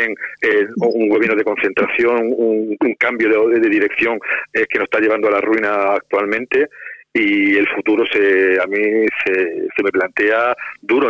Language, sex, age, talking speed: Spanish, male, 40-59, 170 wpm